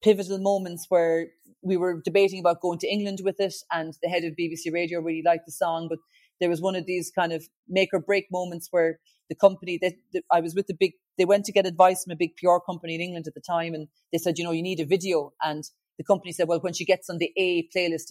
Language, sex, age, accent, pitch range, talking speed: English, female, 30-49, Irish, 160-190 Hz, 260 wpm